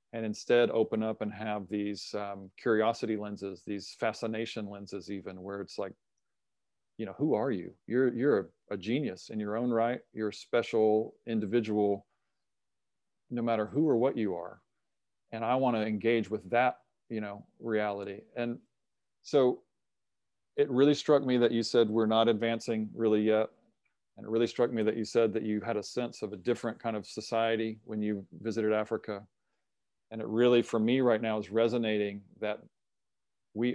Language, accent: English, American